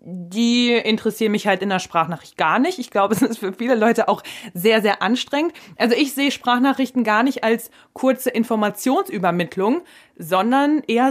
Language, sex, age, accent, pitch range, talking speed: German, female, 20-39, German, 195-255 Hz, 165 wpm